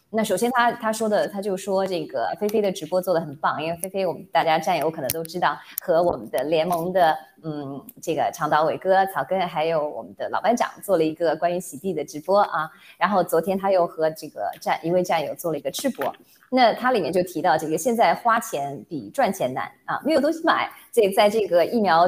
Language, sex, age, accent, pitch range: Chinese, female, 20-39, native, 160-215 Hz